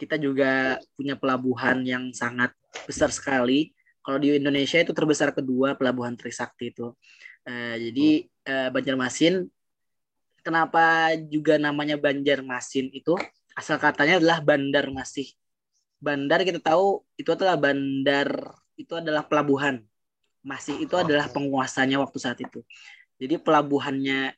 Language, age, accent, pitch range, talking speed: Indonesian, 20-39, native, 125-150 Hz, 120 wpm